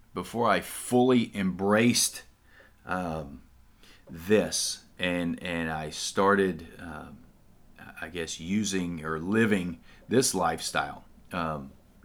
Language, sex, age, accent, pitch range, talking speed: English, male, 40-59, American, 90-115 Hz, 95 wpm